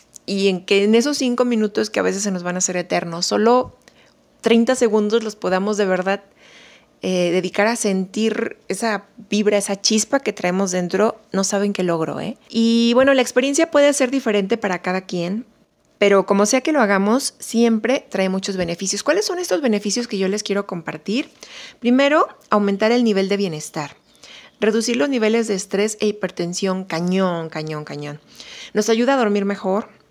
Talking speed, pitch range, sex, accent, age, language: 175 wpm, 185-225 Hz, female, Mexican, 30-49, Spanish